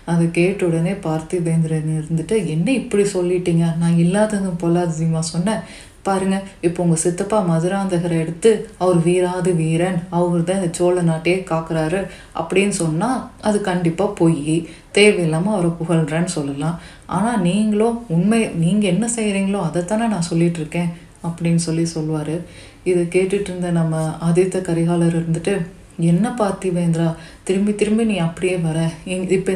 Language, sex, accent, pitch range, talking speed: Tamil, female, native, 165-195 Hz, 130 wpm